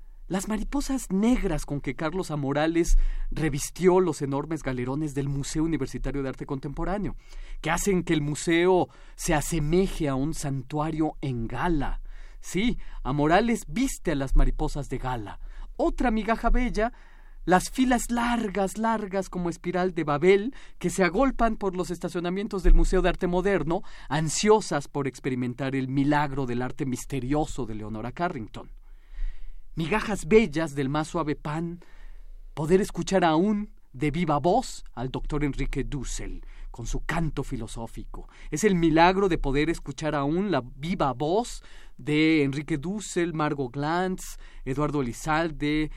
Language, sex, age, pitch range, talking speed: Spanish, male, 40-59, 140-190 Hz, 140 wpm